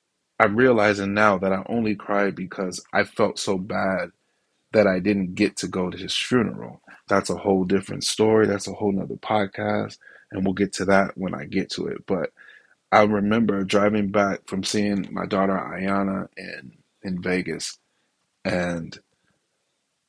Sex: male